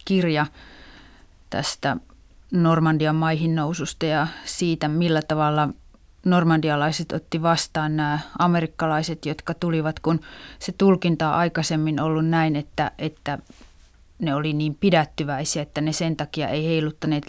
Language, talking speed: Finnish, 120 wpm